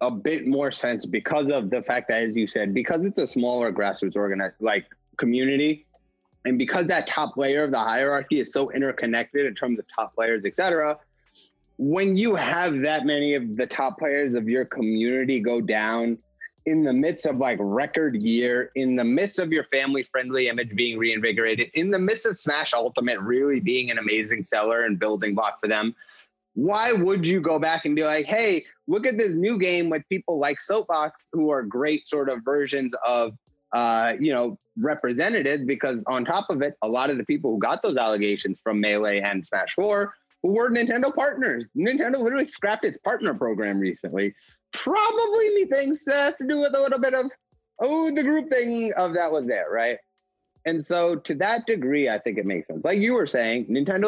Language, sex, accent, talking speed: English, male, American, 195 wpm